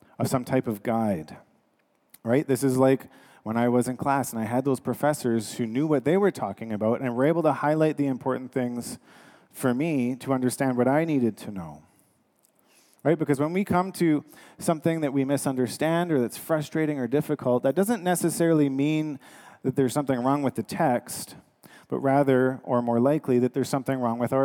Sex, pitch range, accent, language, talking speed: male, 115-140 Hz, American, English, 195 wpm